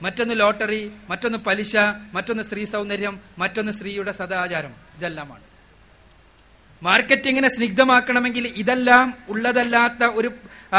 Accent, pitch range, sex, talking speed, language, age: native, 185-240 Hz, male, 90 wpm, Malayalam, 30-49